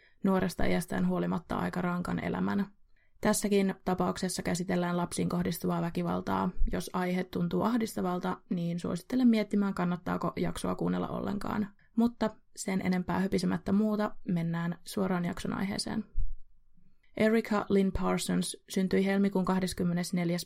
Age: 20-39